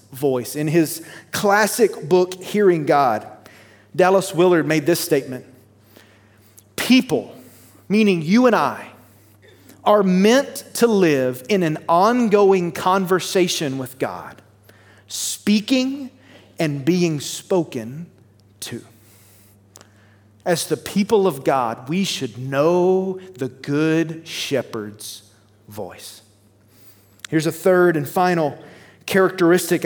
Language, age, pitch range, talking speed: English, 30-49, 115-185 Hz, 100 wpm